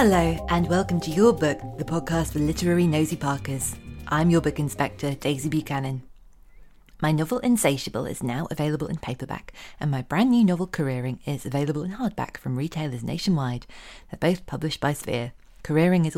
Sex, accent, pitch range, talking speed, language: female, British, 135-170 Hz, 170 wpm, English